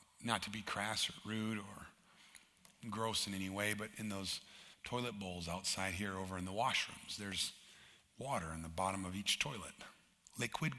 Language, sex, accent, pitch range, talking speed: English, male, American, 95-120 Hz, 170 wpm